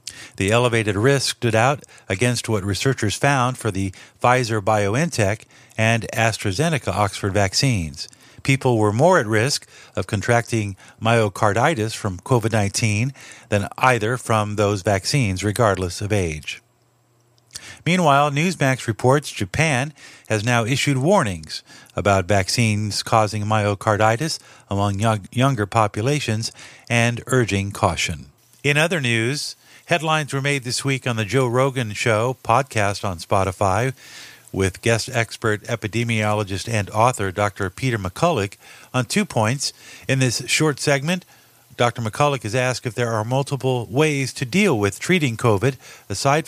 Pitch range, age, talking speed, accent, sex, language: 105-135 Hz, 50-69, 125 wpm, American, male, English